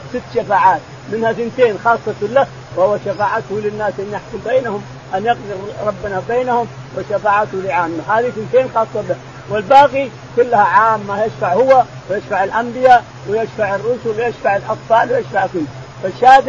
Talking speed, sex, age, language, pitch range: 135 wpm, male, 40-59, Arabic, 185-235 Hz